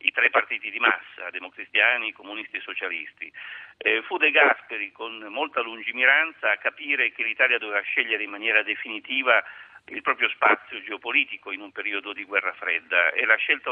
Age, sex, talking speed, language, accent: 50-69, male, 165 wpm, Italian, native